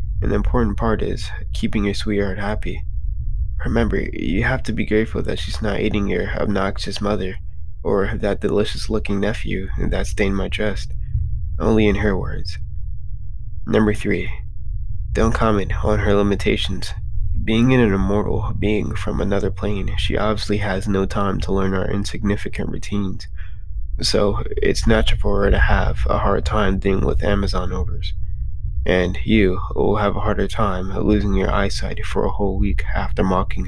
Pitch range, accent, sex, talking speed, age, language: 95-105 Hz, American, male, 160 wpm, 20-39, English